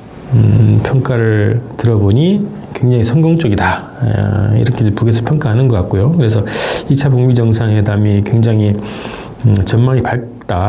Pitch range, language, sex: 105-140 Hz, Korean, male